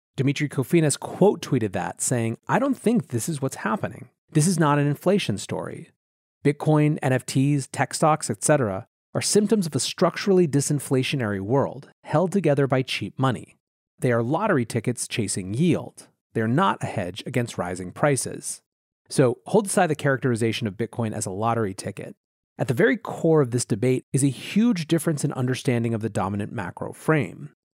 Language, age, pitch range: English, 30-49, 115-160 Hz